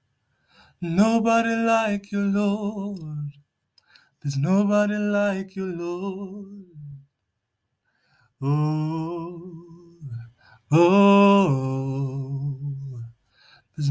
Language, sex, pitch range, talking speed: English, male, 140-215 Hz, 55 wpm